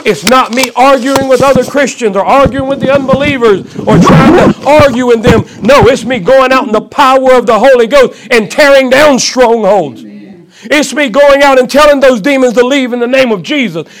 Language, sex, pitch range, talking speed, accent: English, male, 175-255 Hz, 210 wpm, American